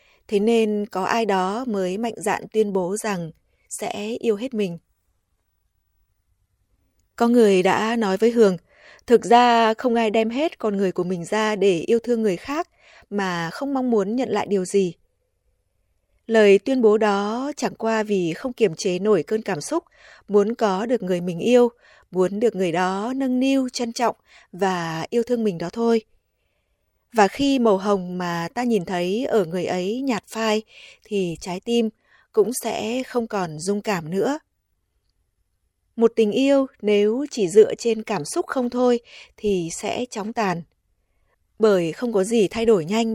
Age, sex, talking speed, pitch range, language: 20-39, female, 170 wpm, 180-230 Hz, Vietnamese